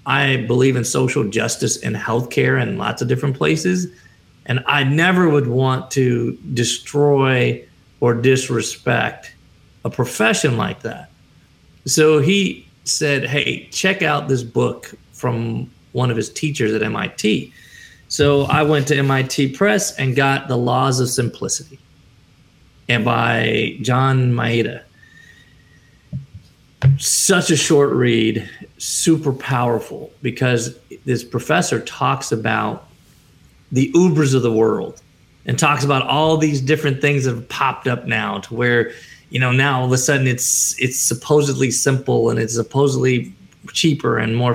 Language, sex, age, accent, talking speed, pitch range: English, male, 40-59, American, 140 wpm, 120-145 Hz